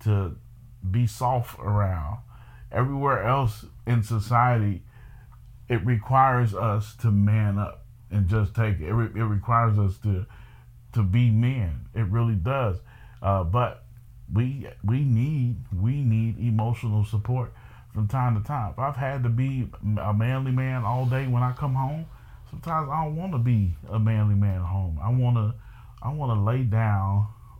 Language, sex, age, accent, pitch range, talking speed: English, male, 30-49, American, 100-120 Hz, 165 wpm